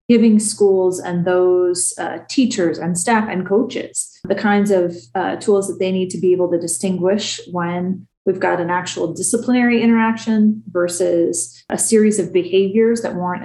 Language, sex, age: English, female, 30-49